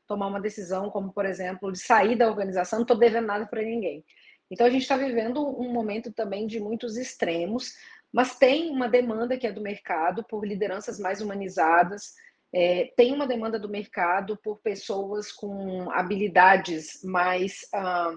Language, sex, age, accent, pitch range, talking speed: Portuguese, female, 40-59, Brazilian, 195-240 Hz, 160 wpm